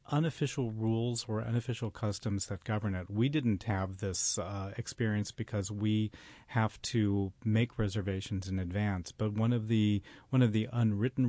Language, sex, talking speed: English, male, 165 wpm